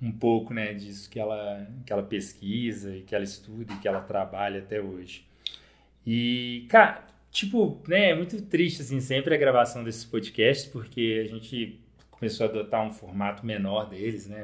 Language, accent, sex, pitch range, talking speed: Portuguese, Brazilian, male, 105-130 Hz, 160 wpm